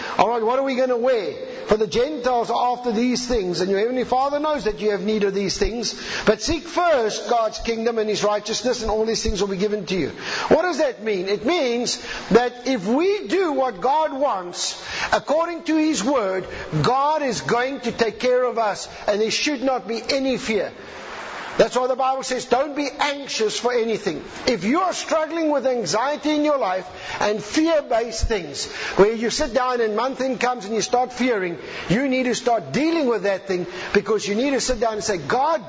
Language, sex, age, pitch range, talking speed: English, male, 50-69, 215-280 Hz, 210 wpm